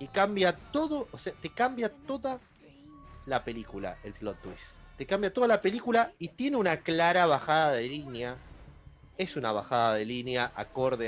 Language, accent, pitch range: Spanish, Argentinian, 115-160 Hz